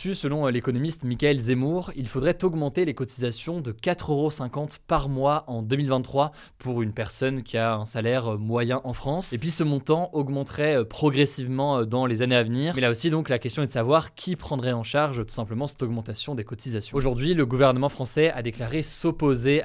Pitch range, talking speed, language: 120-150 Hz, 190 wpm, French